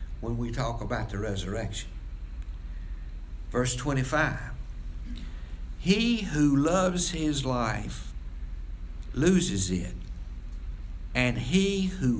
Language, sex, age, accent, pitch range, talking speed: English, male, 60-79, American, 80-125 Hz, 90 wpm